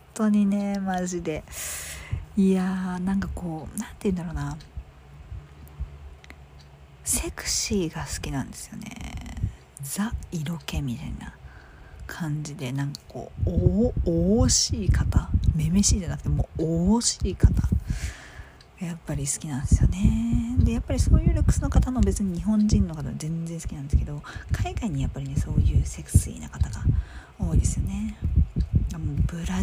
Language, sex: Japanese, female